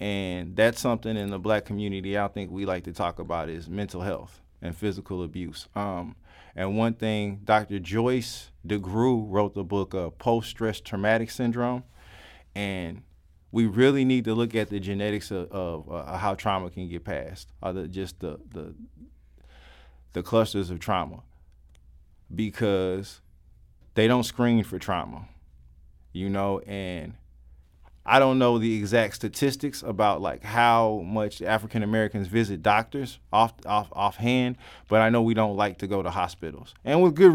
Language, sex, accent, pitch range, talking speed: English, male, American, 90-115 Hz, 155 wpm